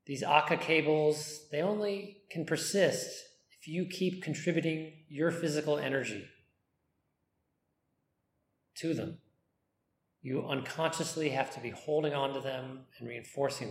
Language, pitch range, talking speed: English, 125-155 Hz, 120 wpm